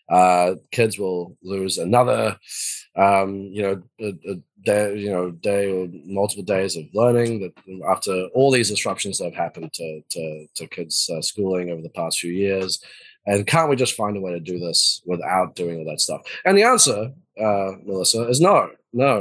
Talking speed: 190 wpm